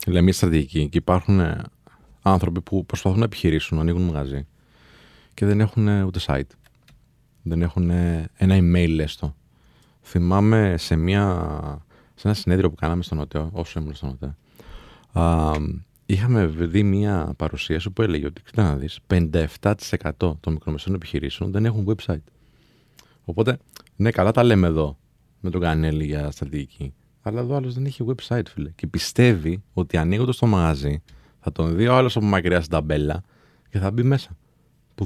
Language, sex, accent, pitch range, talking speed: Greek, male, native, 80-120 Hz, 155 wpm